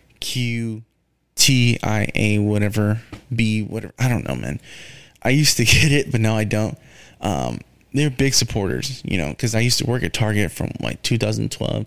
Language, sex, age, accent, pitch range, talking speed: English, male, 20-39, American, 105-125 Hz, 180 wpm